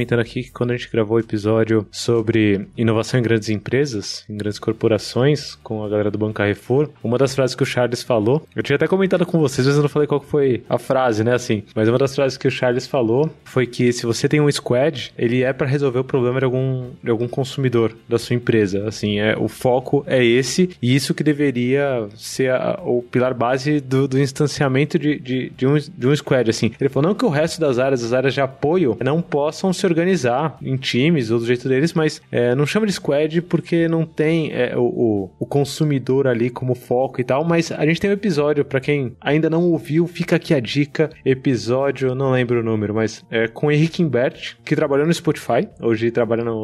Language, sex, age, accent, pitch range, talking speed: Portuguese, male, 20-39, Brazilian, 120-150 Hz, 230 wpm